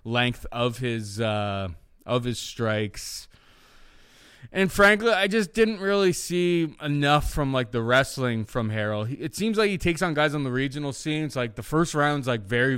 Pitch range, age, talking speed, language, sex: 110-150 Hz, 20-39, 185 wpm, English, male